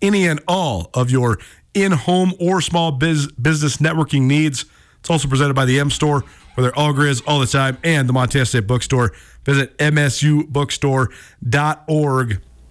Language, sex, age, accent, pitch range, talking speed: English, male, 40-59, American, 130-175 Hz, 150 wpm